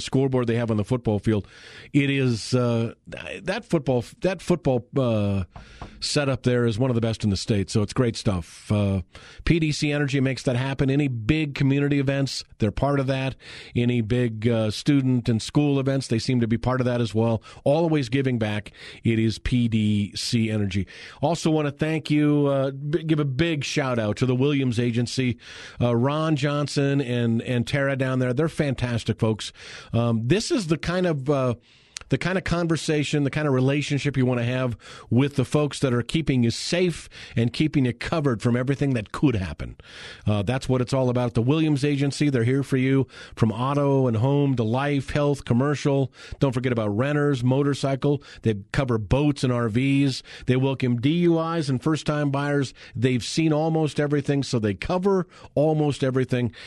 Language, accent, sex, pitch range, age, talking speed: English, American, male, 120-145 Hz, 40-59, 185 wpm